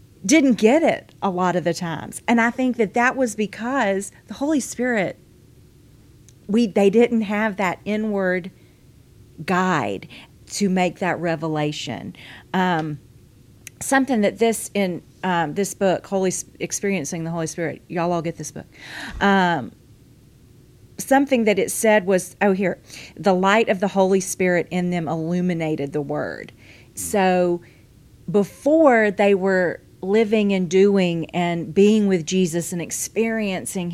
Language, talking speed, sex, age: English, 140 wpm, female, 40-59